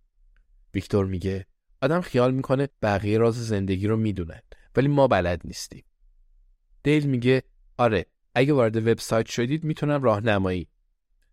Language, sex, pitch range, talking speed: Persian, male, 90-120 Hz, 120 wpm